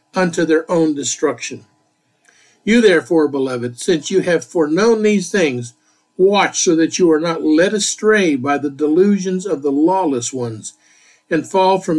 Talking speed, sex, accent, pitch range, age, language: 155 wpm, male, American, 145-190 Hz, 50-69, English